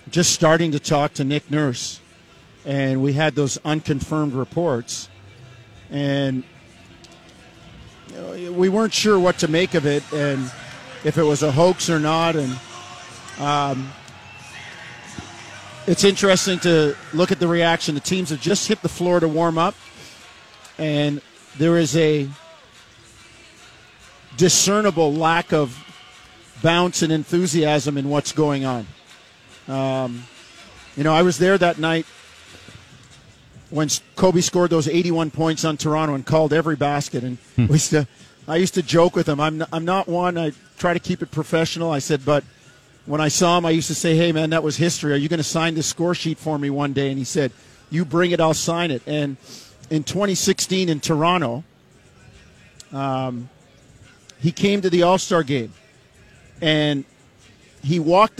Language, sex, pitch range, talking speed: English, male, 135-170 Hz, 160 wpm